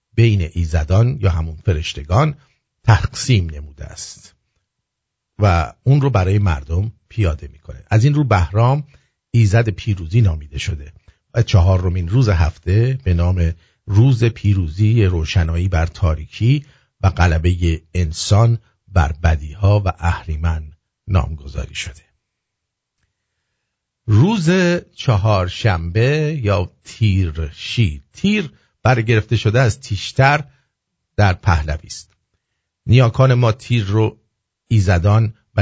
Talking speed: 105 wpm